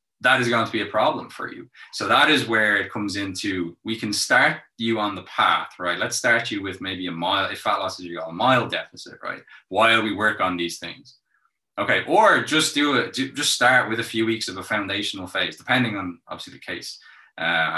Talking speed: 225 wpm